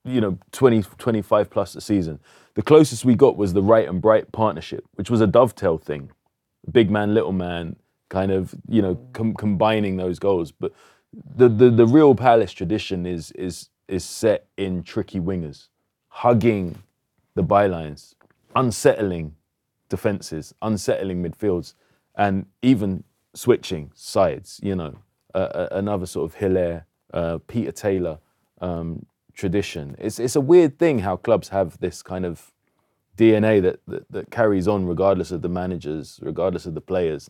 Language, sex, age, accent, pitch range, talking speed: English, male, 20-39, British, 85-110 Hz, 155 wpm